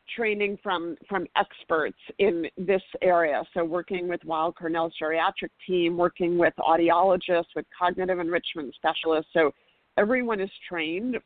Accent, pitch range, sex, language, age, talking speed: American, 165-195 Hz, female, English, 40-59, 135 wpm